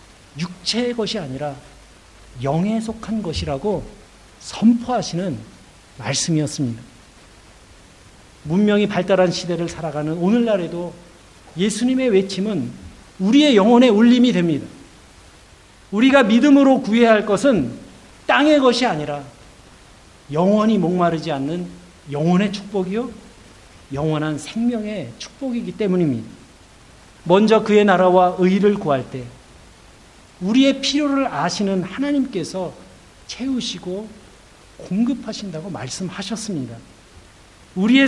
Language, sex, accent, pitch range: Korean, male, native, 140-220 Hz